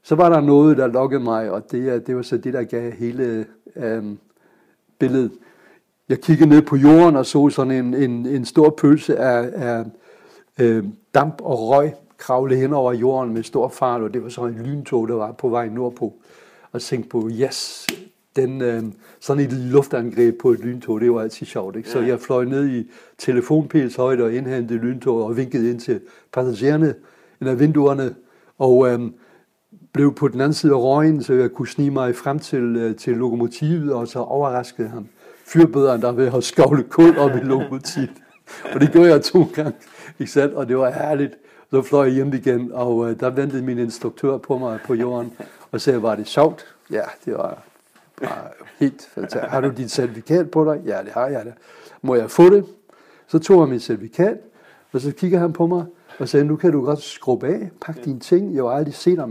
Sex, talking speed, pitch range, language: male, 195 wpm, 120-145 Hz, Danish